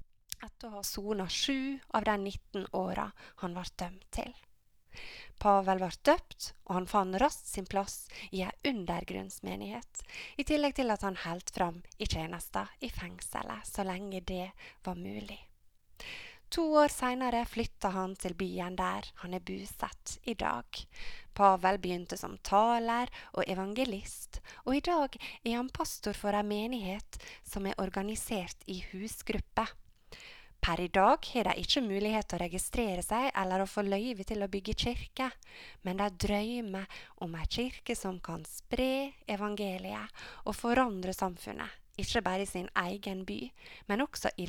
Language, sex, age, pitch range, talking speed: English, female, 20-39, 185-240 Hz, 150 wpm